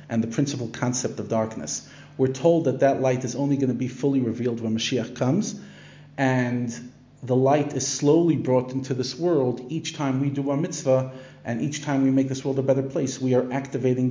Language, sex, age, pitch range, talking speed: English, male, 40-59, 125-145 Hz, 210 wpm